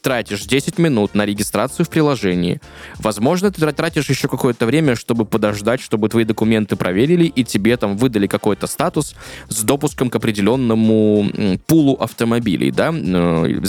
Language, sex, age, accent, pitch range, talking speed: Russian, male, 20-39, native, 100-135 Hz, 145 wpm